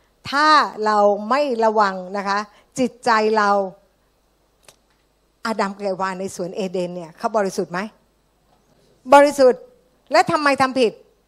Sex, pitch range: female, 200-260 Hz